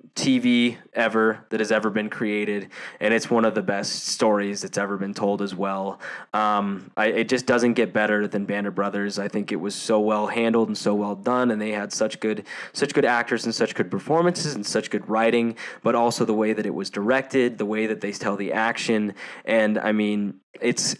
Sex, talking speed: male, 220 wpm